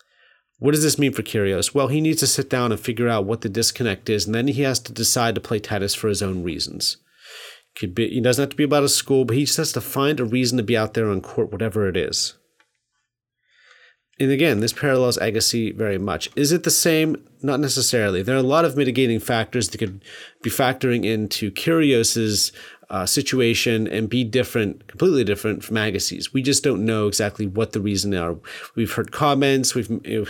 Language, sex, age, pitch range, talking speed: English, male, 40-59, 105-130 Hz, 215 wpm